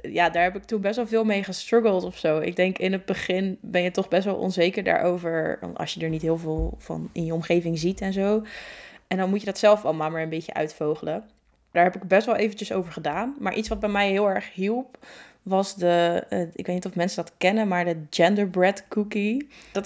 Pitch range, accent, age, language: 170-220 Hz, Dutch, 20-39, Dutch